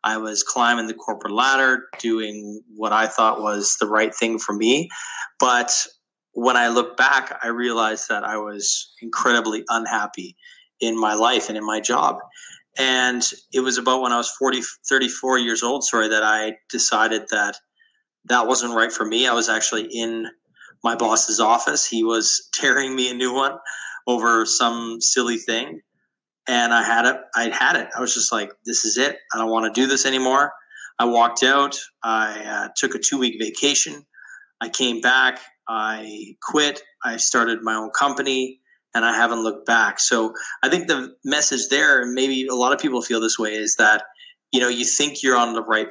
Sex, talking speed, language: male, 190 wpm, English